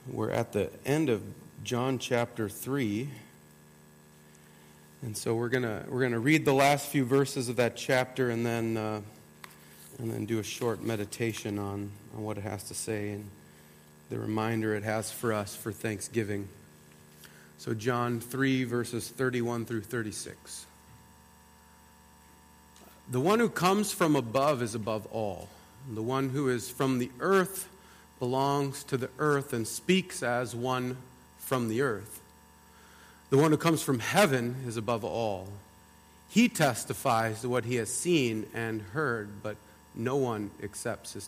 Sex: male